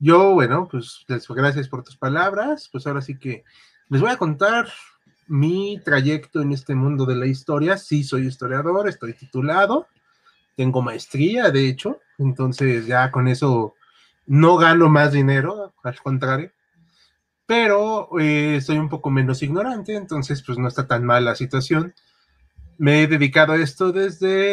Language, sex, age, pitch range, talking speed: Spanish, male, 30-49, 135-180 Hz, 155 wpm